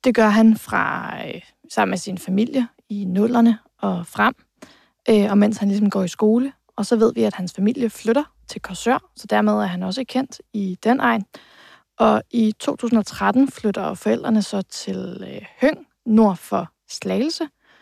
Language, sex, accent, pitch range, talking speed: Danish, female, native, 200-230 Hz, 175 wpm